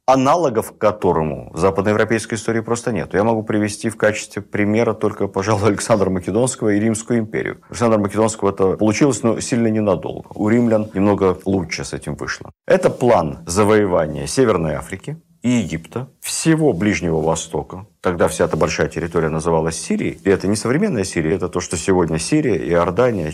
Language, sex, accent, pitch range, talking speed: Russian, male, native, 85-115 Hz, 165 wpm